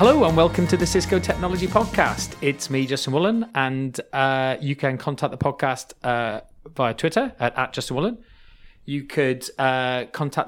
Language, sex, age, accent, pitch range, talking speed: English, male, 30-49, British, 120-155 Hz, 170 wpm